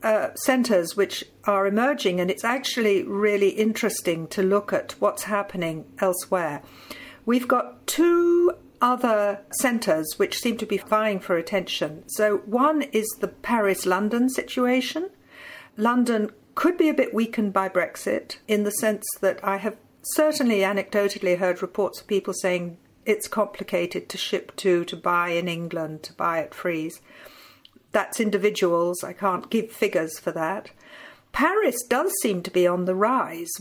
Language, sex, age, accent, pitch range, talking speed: English, female, 50-69, British, 185-245 Hz, 150 wpm